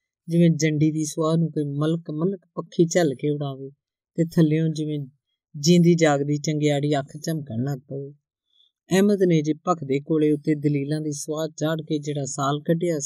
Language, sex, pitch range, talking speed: Punjabi, female, 140-165 Hz, 165 wpm